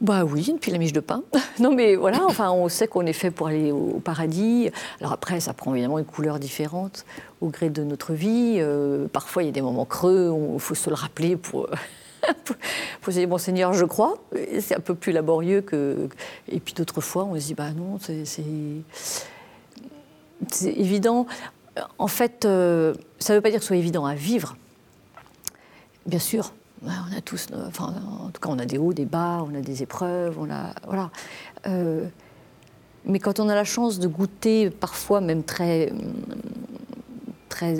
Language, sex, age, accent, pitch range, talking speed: French, female, 50-69, French, 160-210 Hz, 200 wpm